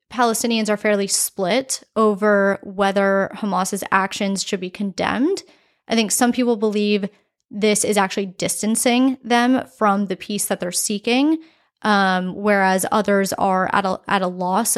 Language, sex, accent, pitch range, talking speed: English, female, American, 195-235 Hz, 145 wpm